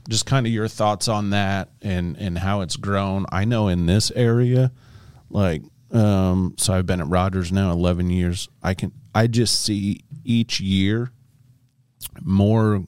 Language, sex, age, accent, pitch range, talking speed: English, male, 30-49, American, 85-115 Hz, 165 wpm